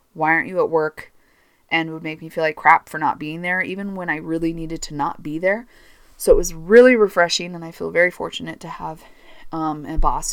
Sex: female